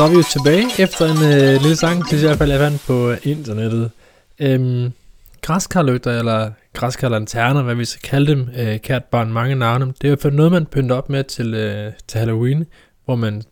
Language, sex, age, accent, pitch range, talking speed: Danish, male, 20-39, native, 115-145 Hz, 215 wpm